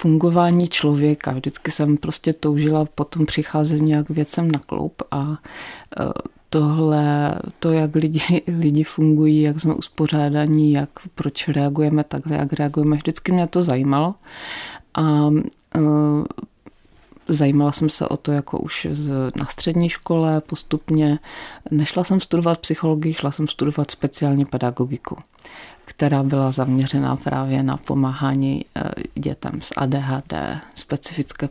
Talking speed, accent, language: 125 wpm, native, Czech